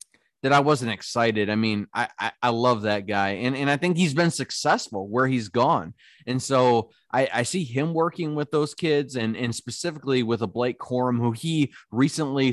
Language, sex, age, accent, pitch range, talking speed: English, male, 30-49, American, 110-140 Hz, 200 wpm